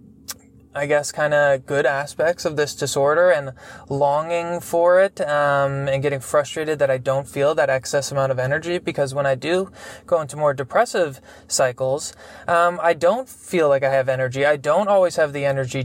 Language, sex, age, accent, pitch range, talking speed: English, male, 20-39, American, 140-190 Hz, 185 wpm